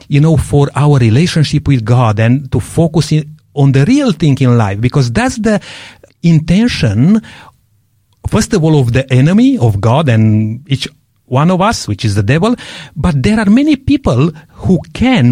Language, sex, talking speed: English, male, 170 wpm